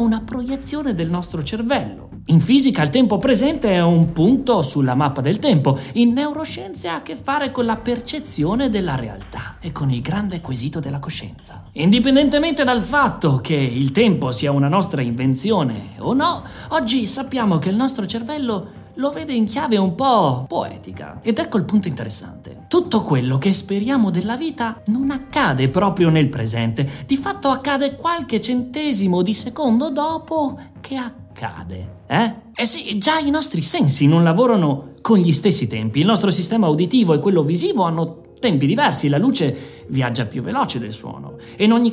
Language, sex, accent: Italian, male, native